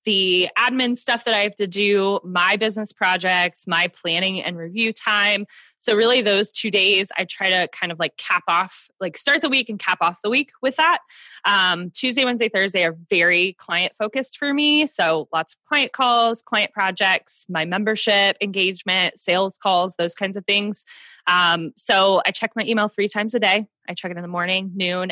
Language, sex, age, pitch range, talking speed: English, female, 20-39, 175-220 Hz, 200 wpm